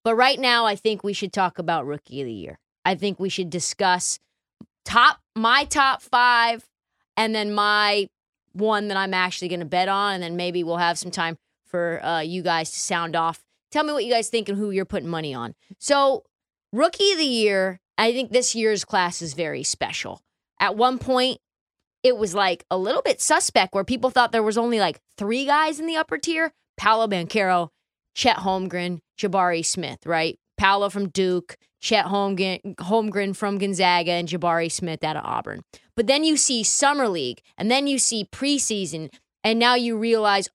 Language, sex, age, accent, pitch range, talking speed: English, female, 20-39, American, 180-245 Hz, 195 wpm